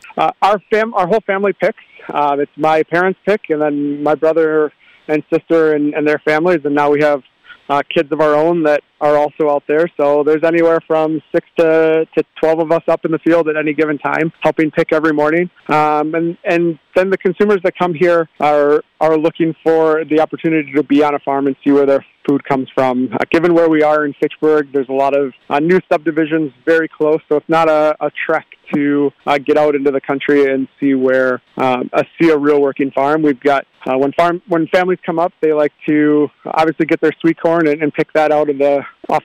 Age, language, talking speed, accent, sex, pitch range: 40-59, English, 230 wpm, American, male, 145-165 Hz